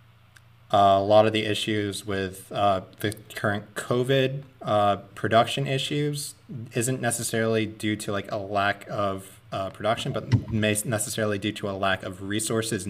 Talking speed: 155 wpm